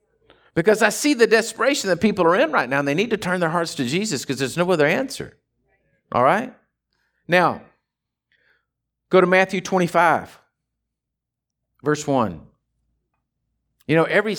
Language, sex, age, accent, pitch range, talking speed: English, male, 50-69, American, 135-185 Hz, 155 wpm